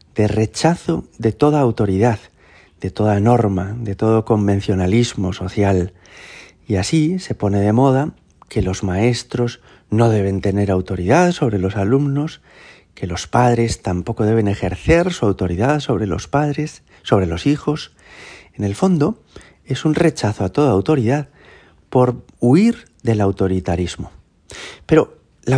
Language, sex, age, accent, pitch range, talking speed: Spanish, male, 40-59, Spanish, 100-135 Hz, 135 wpm